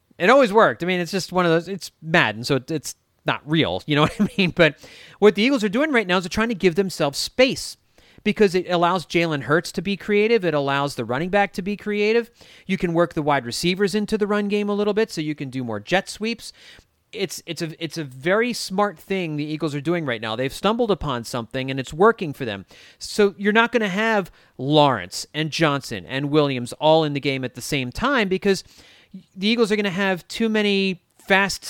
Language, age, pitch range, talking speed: English, 30-49, 140-200 Hz, 230 wpm